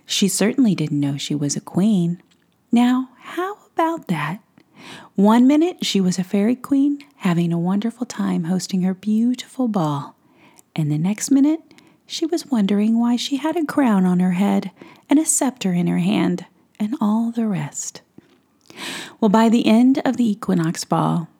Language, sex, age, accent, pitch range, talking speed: English, female, 40-59, American, 170-255 Hz, 170 wpm